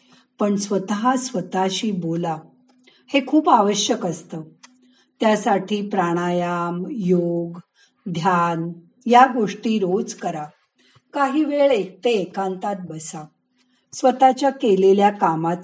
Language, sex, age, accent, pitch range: Marathi, female, 50-69, native, 180-250 Hz